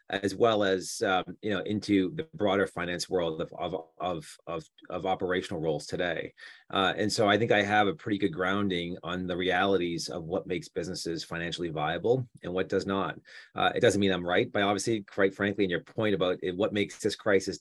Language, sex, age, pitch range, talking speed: English, male, 30-49, 90-105 Hz, 210 wpm